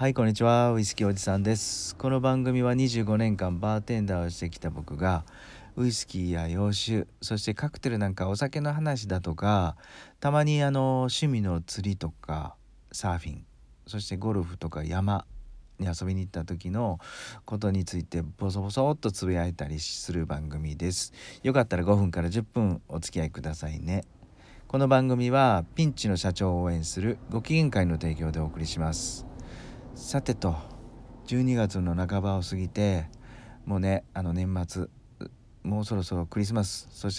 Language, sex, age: Japanese, male, 40-59